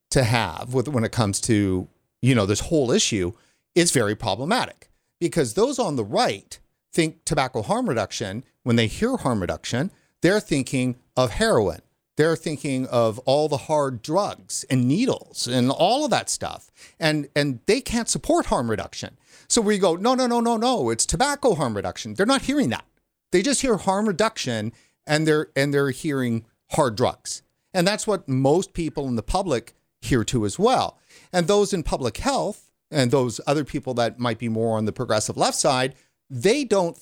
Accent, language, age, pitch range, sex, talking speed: American, English, 50-69, 115-170 Hz, male, 185 wpm